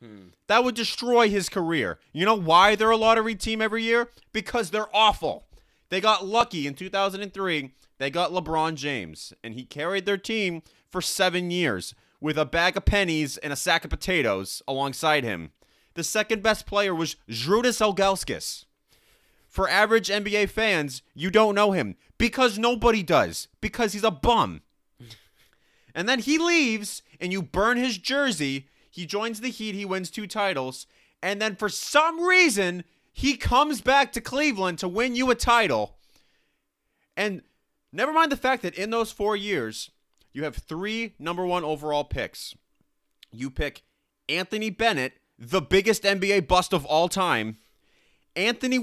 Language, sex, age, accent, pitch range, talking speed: English, male, 30-49, American, 155-225 Hz, 160 wpm